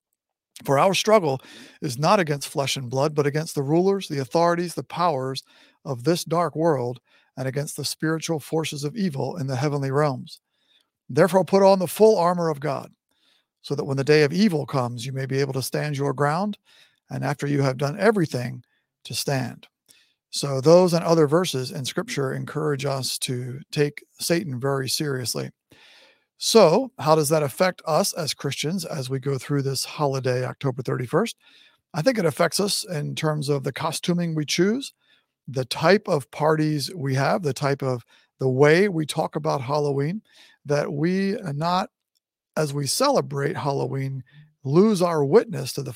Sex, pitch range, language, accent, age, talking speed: male, 140-175 Hz, English, American, 50-69, 175 wpm